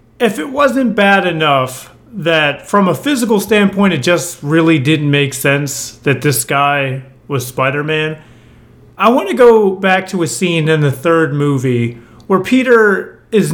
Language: English